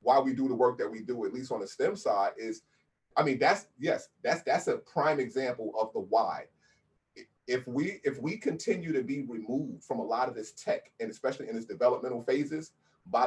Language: English